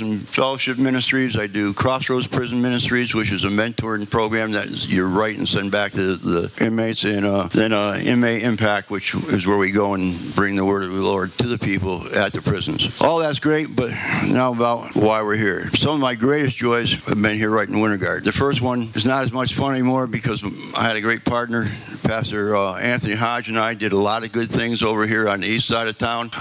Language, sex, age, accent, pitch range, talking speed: English, male, 60-79, American, 105-120 Hz, 230 wpm